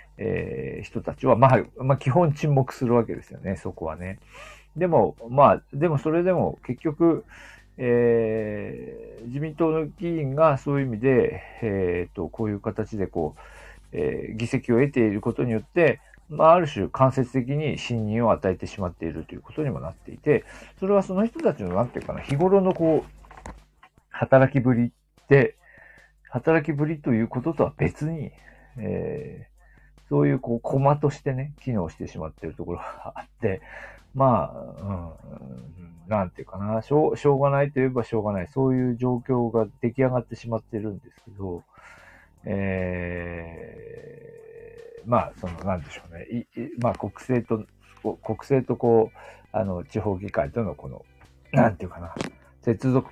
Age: 50-69